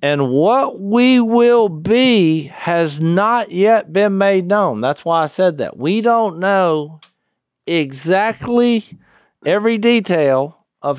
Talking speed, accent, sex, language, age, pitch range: 125 wpm, American, male, English, 50-69, 125-185 Hz